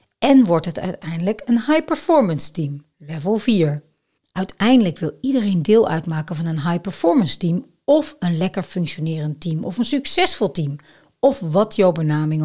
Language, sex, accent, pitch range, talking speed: Dutch, female, Dutch, 160-225 Hz, 150 wpm